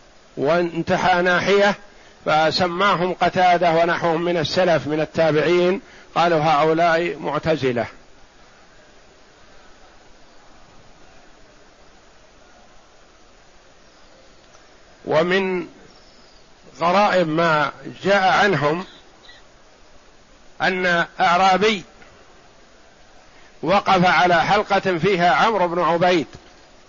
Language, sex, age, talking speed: Arabic, male, 50-69, 60 wpm